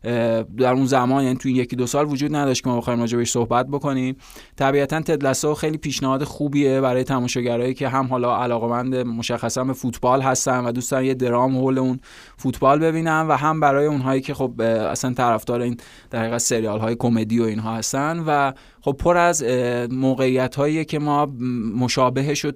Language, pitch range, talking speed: Persian, 120-135 Hz, 175 wpm